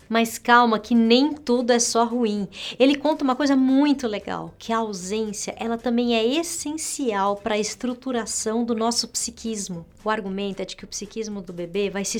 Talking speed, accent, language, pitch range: 180 wpm, Brazilian, Portuguese, 215-250 Hz